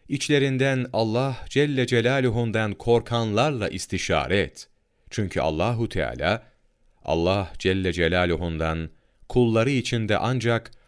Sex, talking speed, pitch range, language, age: male, 90 wpm, 90-125 Hz, Turkish, 40-59